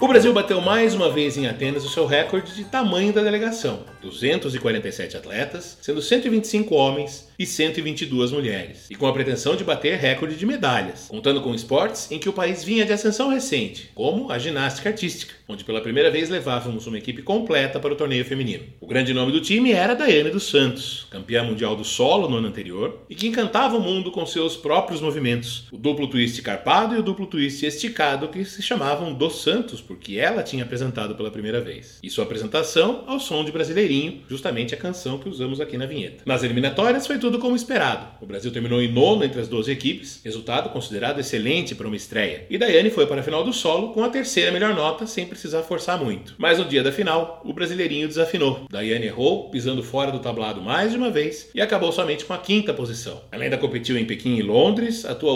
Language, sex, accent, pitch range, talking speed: Portuguese, male, Brazilian, 125-205 Hz, 205 wpm